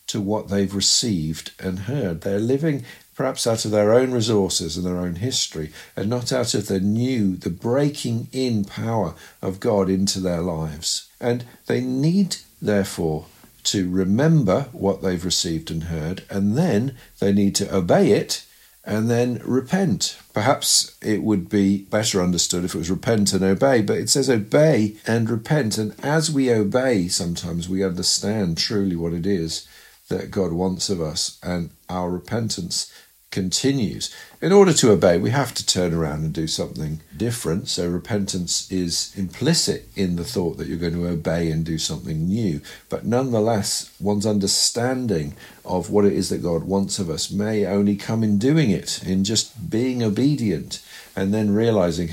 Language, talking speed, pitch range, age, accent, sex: English, 170 wpm, 90-120 Hz, 50-69, British, male